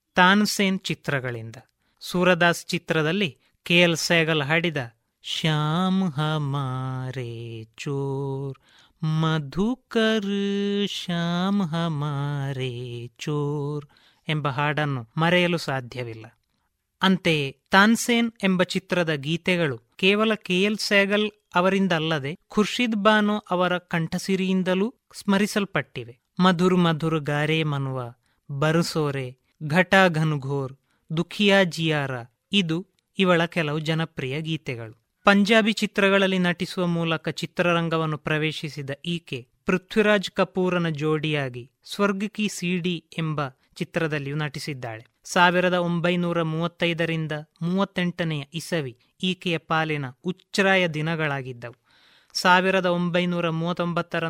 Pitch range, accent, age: 145-185 Hz, native, 30-49